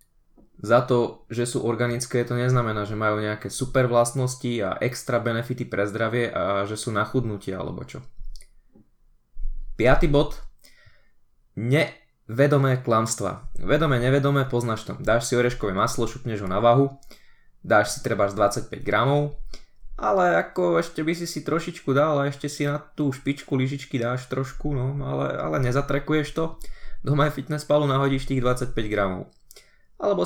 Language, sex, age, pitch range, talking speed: Slovak, male, 20-39, 110-140 Hz, 150 wpm